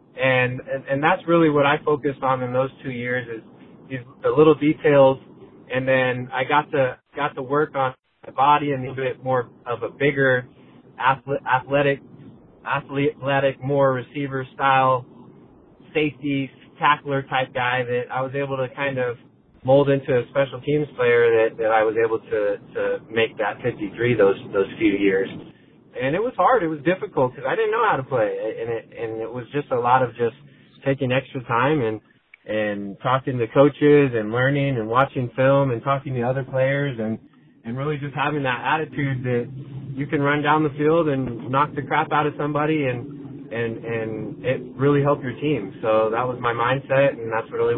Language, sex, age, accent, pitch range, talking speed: English, male, 20-39, American, 125-150 Hz, 190 wpm